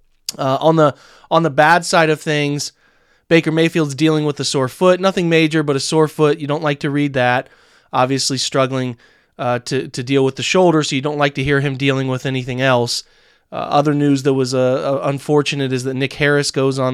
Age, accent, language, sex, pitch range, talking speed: 30-49, American, English, male, 130-155 Hz, 215 wpm